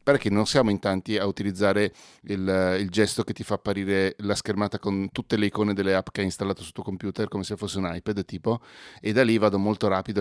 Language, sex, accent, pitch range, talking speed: Italian, male, native, 95-110 Hz, 235 wpm